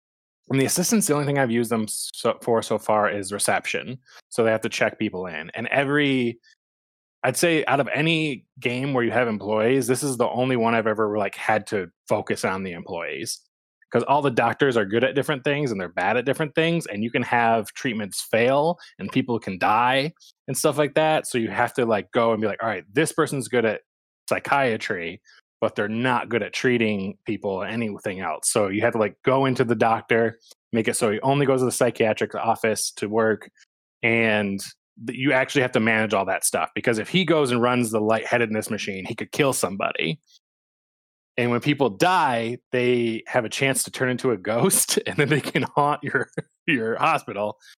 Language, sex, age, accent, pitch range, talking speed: English, male, 20-39, American, 110-135 Hz, 210 wpm